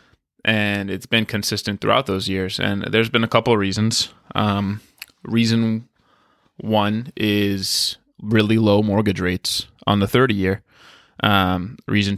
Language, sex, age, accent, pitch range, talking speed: English, male, 20-39, American, 100-110 Hz, 130 wpm